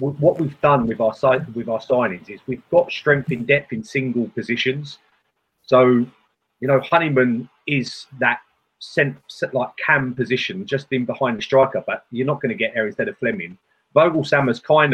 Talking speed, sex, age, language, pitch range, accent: 185 wpm, male, 30-49, English, 125-155 Hz, British